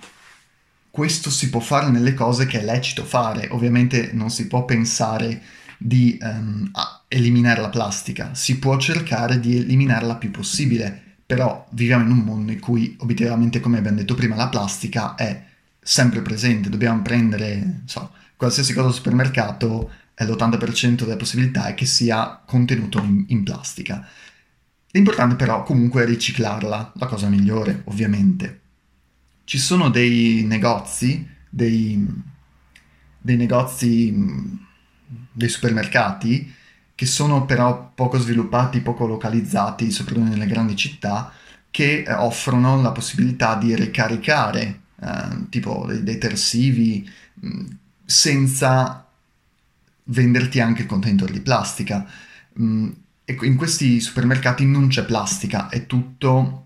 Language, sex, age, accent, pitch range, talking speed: Italian, male, 30-49, native, 110-125 Hz, 125 wpm